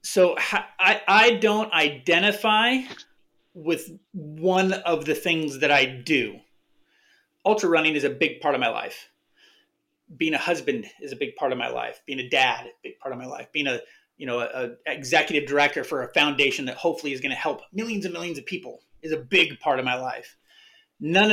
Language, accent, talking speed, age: English, American, 200 wpm, 30-49